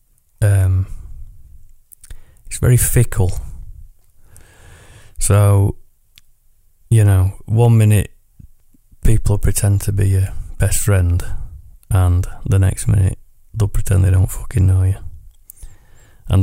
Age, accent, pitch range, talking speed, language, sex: 30-49, British, 90-105 Hz, 100 wpm, English, male